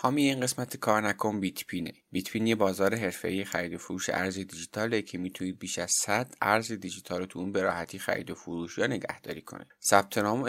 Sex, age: male, 30-49